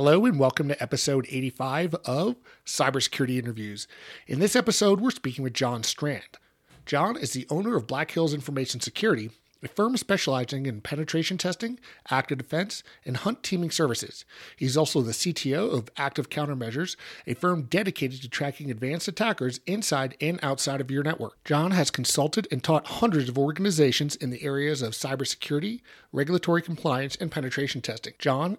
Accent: American